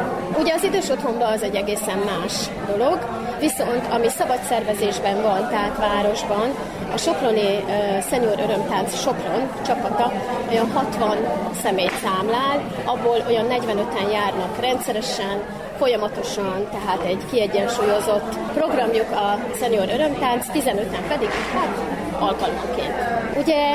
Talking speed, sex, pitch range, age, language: 105 wpm, female, 210-255 Hz, 30-49, Hungarian